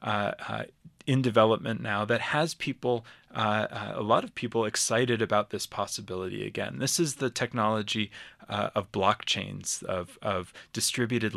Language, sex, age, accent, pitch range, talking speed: English, male, 30-49, American, 105-125 Hz, 155 wpm